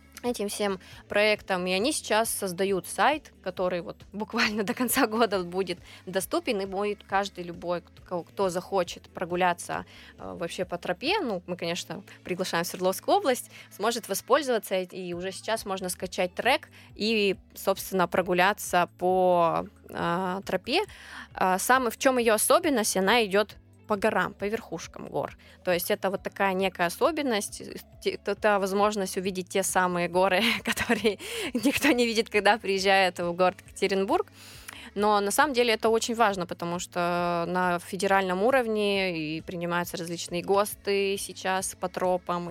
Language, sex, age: Russian, female, 20-39